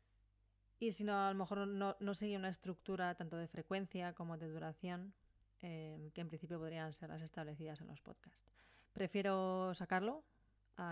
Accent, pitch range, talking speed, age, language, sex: Spanish, 165-200 Hz, 170 wpm, 20-39, Spanish, female